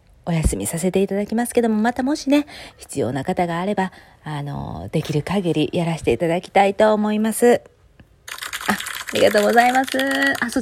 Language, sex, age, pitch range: Japanese, female, 30-49, 255-380 Hz